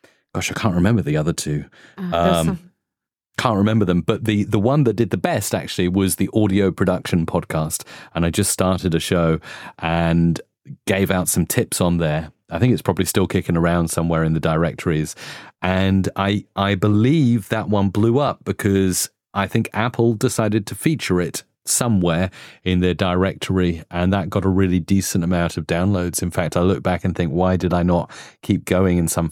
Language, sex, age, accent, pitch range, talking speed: English, male, 30-49, British, 85-100 Hz, 190 wpm